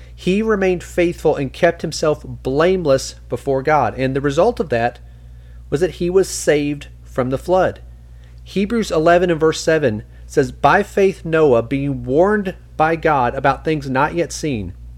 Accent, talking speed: American, 160 wpm